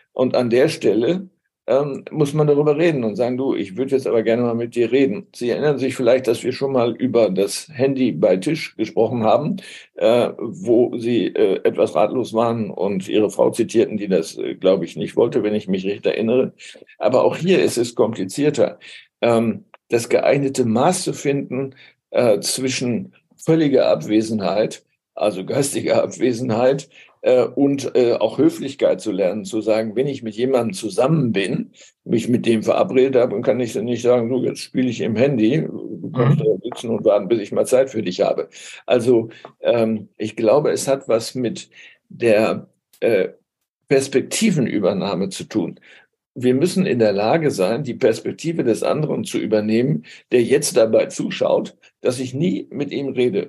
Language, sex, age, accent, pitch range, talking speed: German, male, 60-79, German, 115-170 Hz, 175 wpm